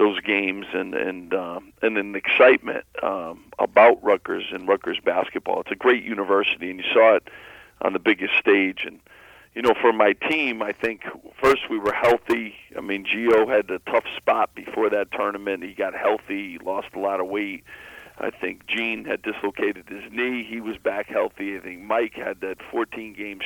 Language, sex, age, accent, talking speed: English, male, 50-69, American, 195 wpm